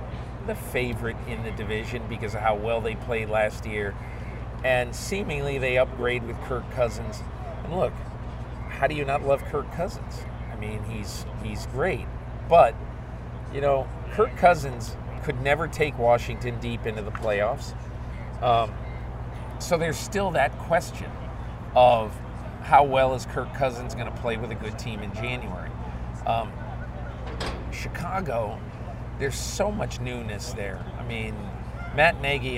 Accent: American